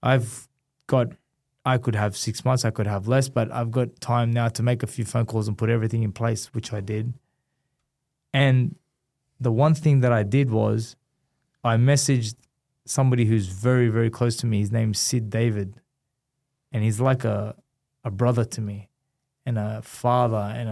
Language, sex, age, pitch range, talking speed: English, male, 20-39, 110-135 Hz, 180 wpm